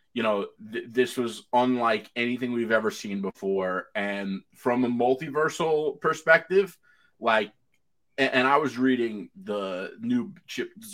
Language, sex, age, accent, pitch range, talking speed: English, male, 30-49, American, 95-125 Hz, 135 wpm